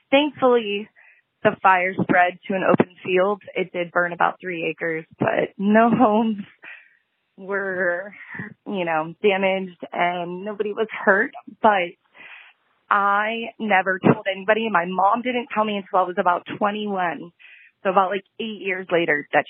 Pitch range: 185-235 Hz